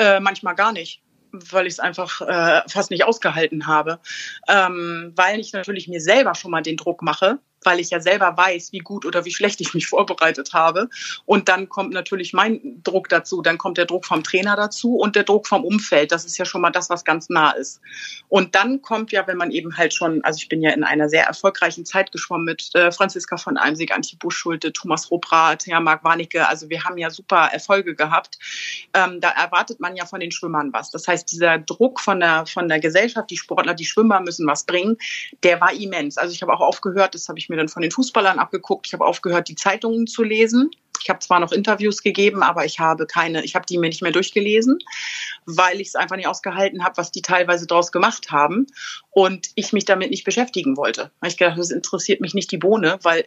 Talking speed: 225 wpm